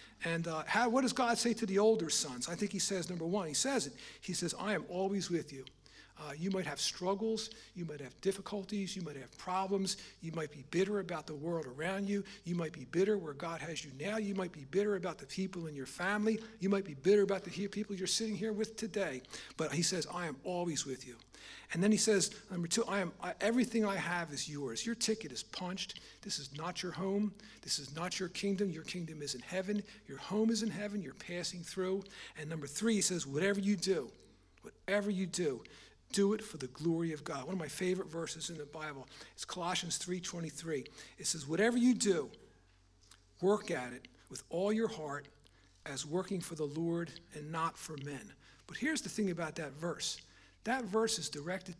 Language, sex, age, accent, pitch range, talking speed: English, male, 50-69, American, 155-200 Hz, 220 wpm